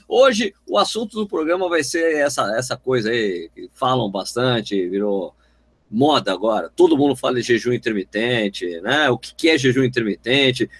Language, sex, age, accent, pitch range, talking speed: Portuguese, male, 50-69, Brazilian, 120-195 Hz, 160 wpm